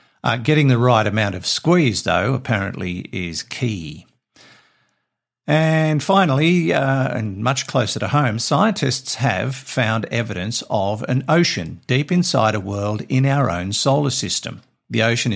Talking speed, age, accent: 145 wpm, 50-69, Australian